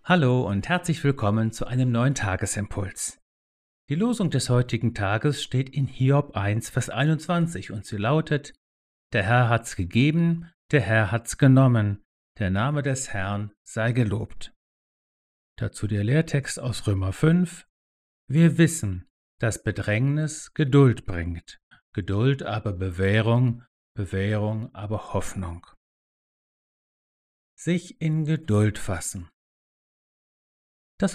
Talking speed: 115 wpm